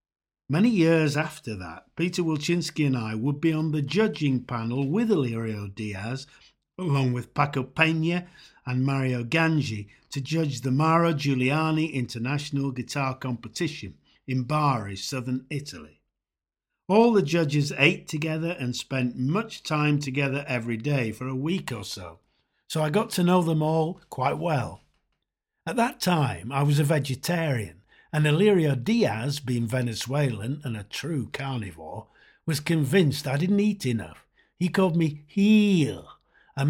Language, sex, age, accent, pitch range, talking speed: English, male, 50-69, British, 130-170 Hz, 145 wpm